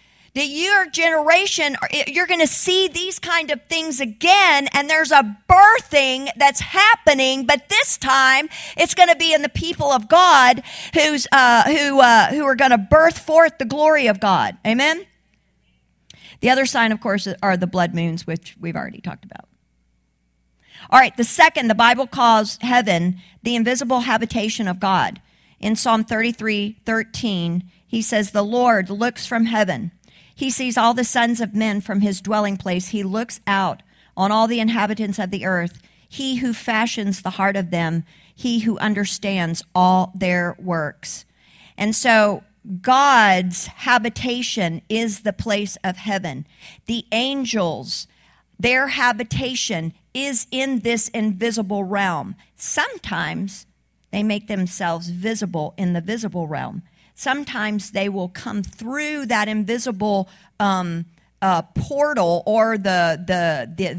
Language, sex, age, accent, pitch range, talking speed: English, female, 50-69, American, 190-260 Hz, 145 wpm